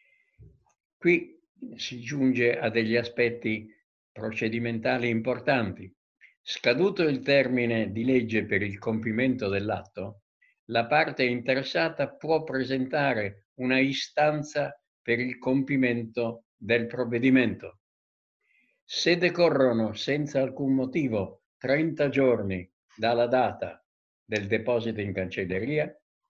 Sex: male